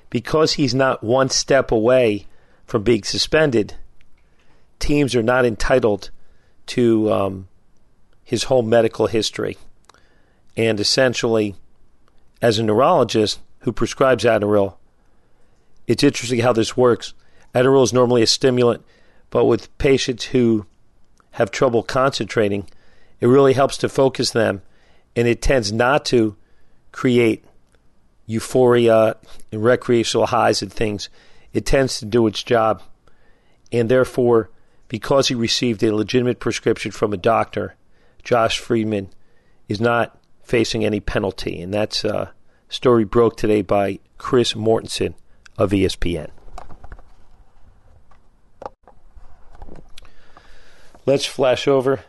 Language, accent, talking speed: English, American, 115 wpm